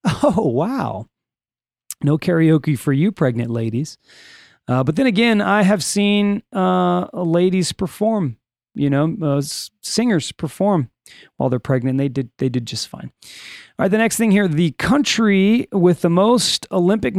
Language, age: English, 30-49